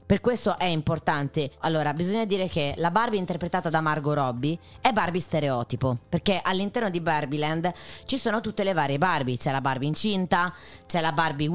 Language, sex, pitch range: Italian, female, 155-200 Hz